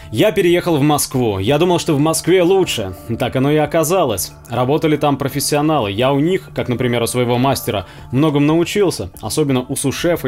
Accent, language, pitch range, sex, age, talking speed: native, Russian, 130-170 Hz, male, 20-39, 175 wpm